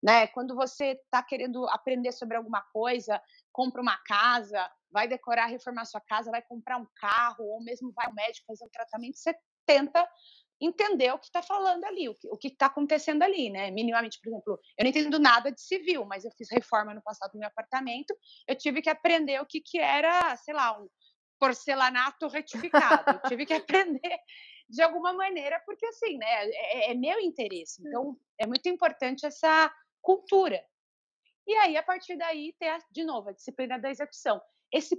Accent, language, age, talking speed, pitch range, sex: Brazilian, Portuguese, 30-49, 190 wpm, 230-325 Hz, female